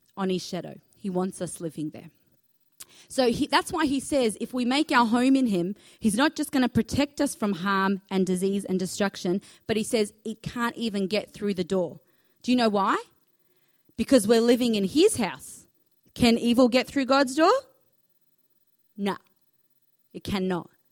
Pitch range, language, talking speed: 190-240 Hz, English, 180 wpm